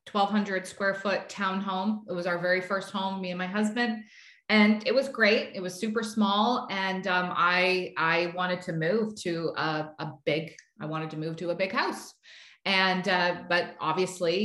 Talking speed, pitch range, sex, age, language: 190 wpm, 180-215 Hz, female, 30-49, English